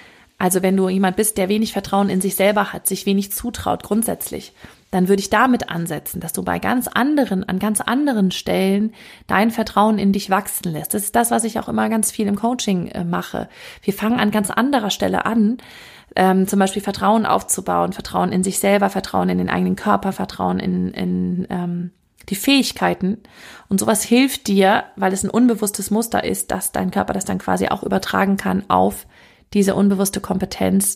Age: 30-49